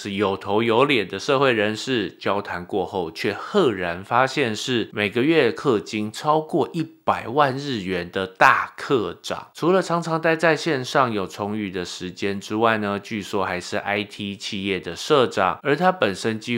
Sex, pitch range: male, 100-130 Hz